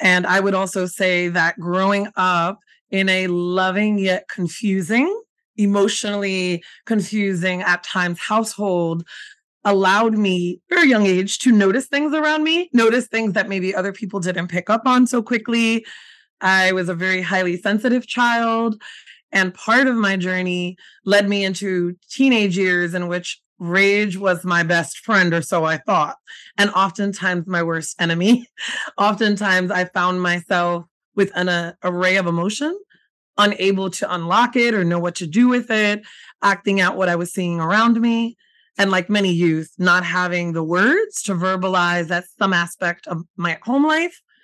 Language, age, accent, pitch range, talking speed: English, 20-39, American, 180-215 Hz, 160 wpm